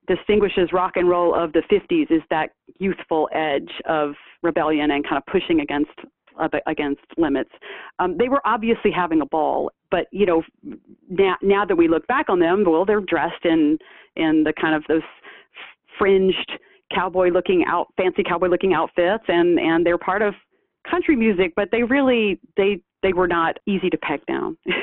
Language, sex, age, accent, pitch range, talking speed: English, female, 40-59, American, 175-275 Hz, 180 wpm